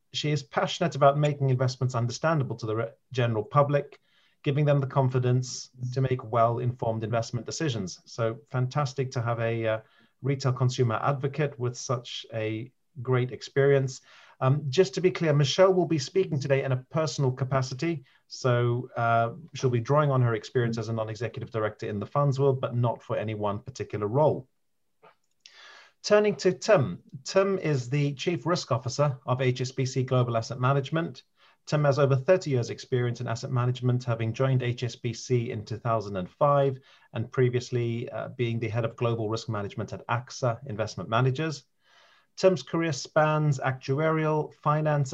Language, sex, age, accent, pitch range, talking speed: English, male, 40-59, British, 115-145 Hz, 155 wpm